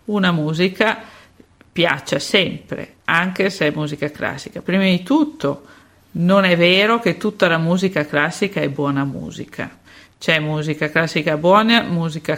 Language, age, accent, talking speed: Italian, 50-69, native, 135 wpm